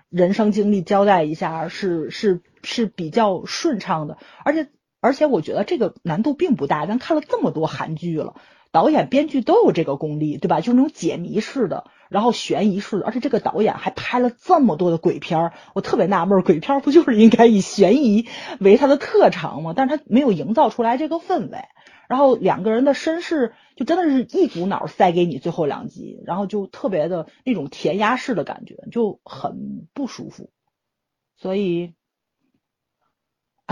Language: Chinese